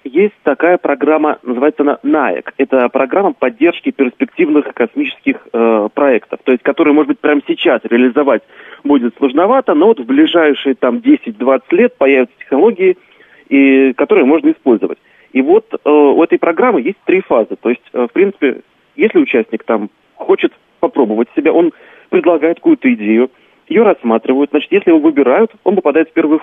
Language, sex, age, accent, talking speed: Russian, male, 40-59, native, 160 wpm